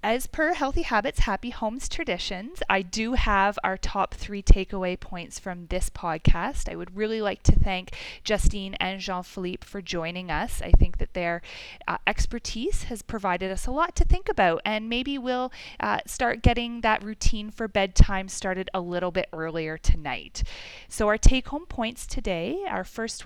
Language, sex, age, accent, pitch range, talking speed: English, female, 30-49, American, 180-235 Hz, 175 wpm